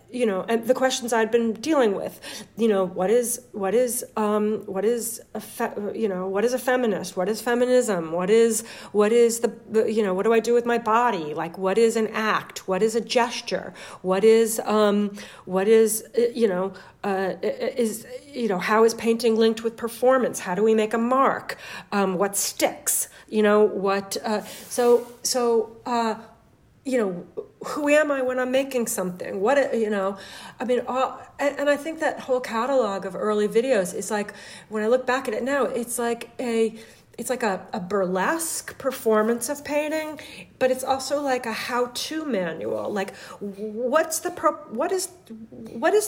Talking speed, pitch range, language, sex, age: 185 wpm, 210-265 Hz, English, female, 40-59